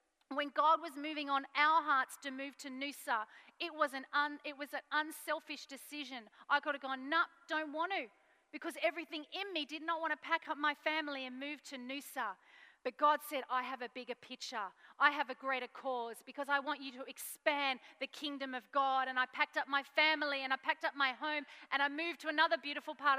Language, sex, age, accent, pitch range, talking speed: English, female, 40-59, Australian, 255-305 Hz, 225 wpm